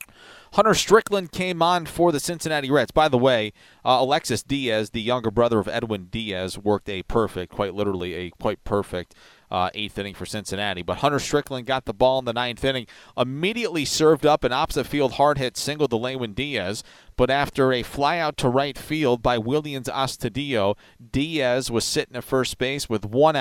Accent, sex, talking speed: American, male, 190 wpm